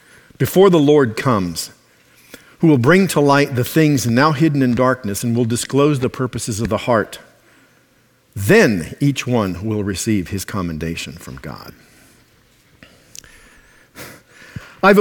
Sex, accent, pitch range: male, American, 115-170 Hz